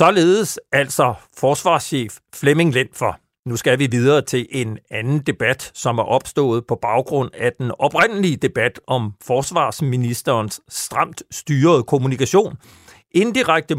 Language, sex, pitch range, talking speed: Danish, male, 125-165 Hz, 120 wpm